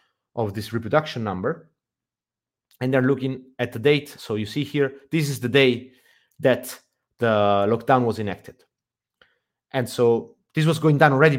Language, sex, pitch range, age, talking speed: English, male, 125-185 Hz, 30-49, 160 wpm